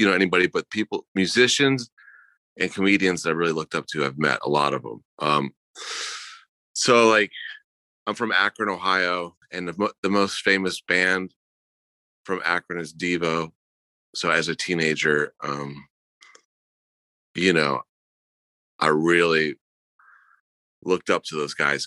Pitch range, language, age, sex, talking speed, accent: 80-100 Hz, English, 30-49, male, 145 wpm, American